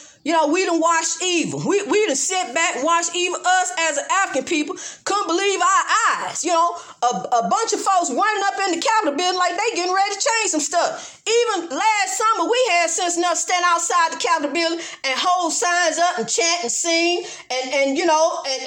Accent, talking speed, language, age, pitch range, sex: American, 220 wpm, English, 40-59, 295-400 Hz, female